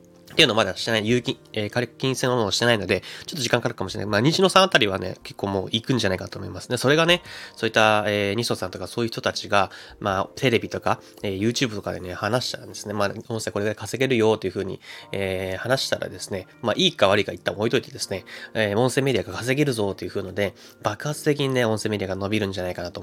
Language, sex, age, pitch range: Japanese, male, 20-39, 95-125 Hz